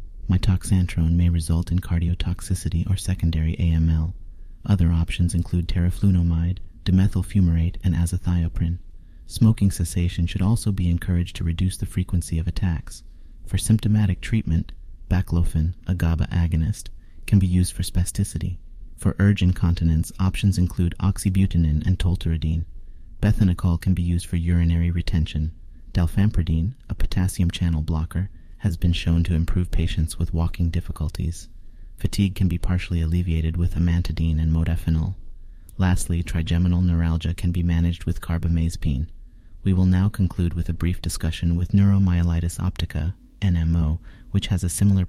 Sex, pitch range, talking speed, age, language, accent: male, 85-95 Hz, 135 wpm, 30-49, English, American